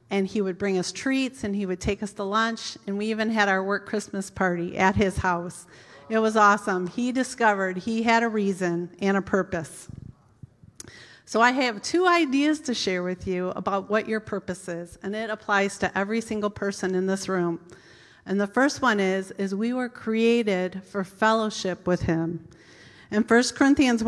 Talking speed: 190 wpm